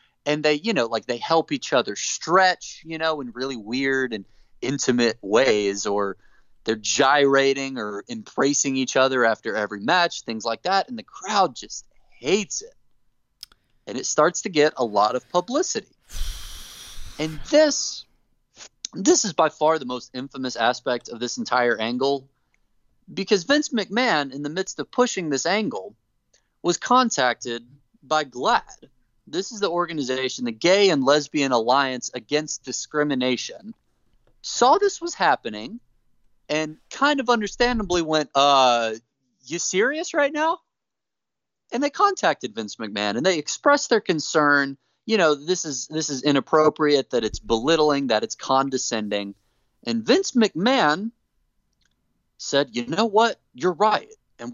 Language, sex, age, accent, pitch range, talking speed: English, male, 30-49, American, 125-205 Hz, 145 wpm